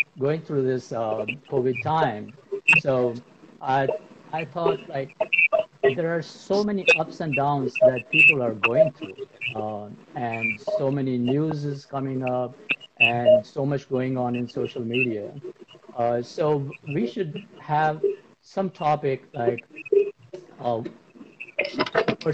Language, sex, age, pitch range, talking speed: Hindi, male, 60-79, 130-175 Hz, 130 wpm